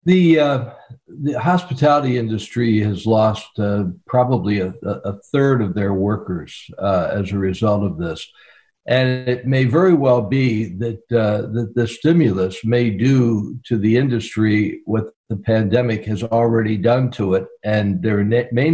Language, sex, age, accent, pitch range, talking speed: English, male, 60-79, American, 110-130 Hz, 155 wpm